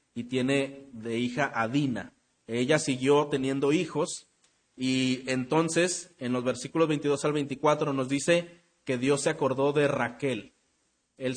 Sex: male